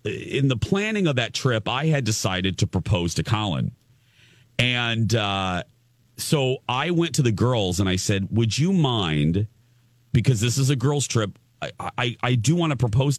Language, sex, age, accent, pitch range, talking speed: English, male, 40-59, American, 110-135 Hz, 180 wpm